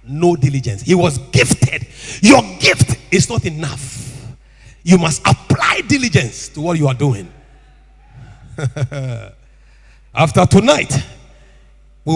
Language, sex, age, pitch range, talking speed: English, male, 50-69, 105-160 Hz, 110 wpm